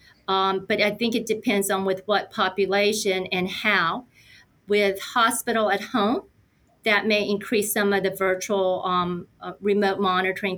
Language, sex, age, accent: English, female, 40-59, American